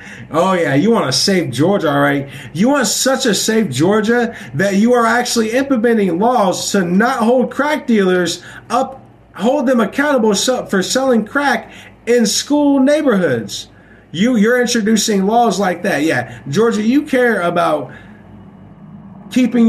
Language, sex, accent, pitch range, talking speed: English, male, American, 130-195 Hz, 150 wpm